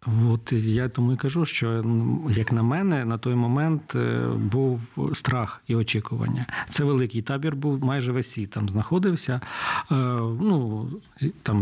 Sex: male